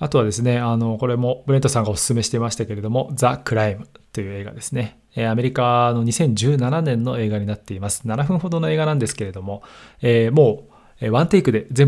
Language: Japanese